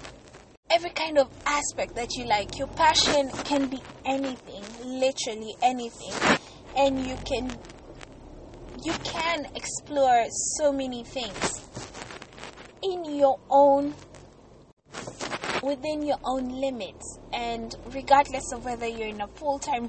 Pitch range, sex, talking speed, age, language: 230-290 Hz, female, 115 wpm, 20-39, English